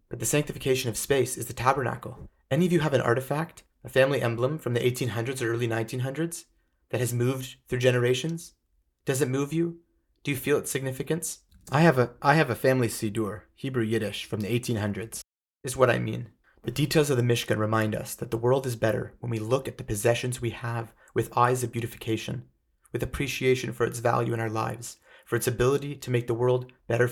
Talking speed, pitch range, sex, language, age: 210 wpm, 115-130 Hz, male, English, 30-49